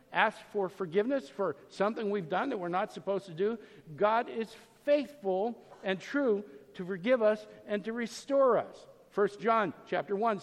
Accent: American